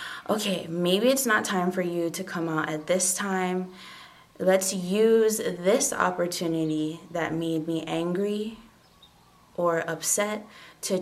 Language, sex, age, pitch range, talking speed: English, female, 20-39, 170-205 Hz, 130 wpm